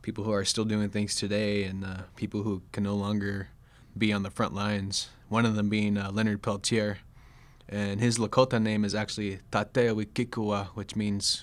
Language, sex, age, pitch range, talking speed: English, male, 20-39, 100-120 Hz, 185 wpm